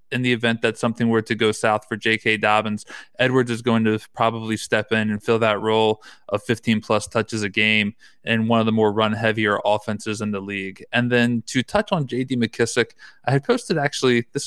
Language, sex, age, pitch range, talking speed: English, male, 20-39, 110-130 Hz, 205 wpm